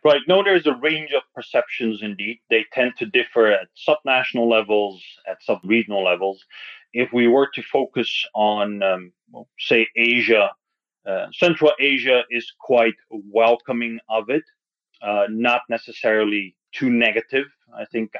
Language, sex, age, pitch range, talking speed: English, male, 30-49, 105-145 Hz, 140 wpm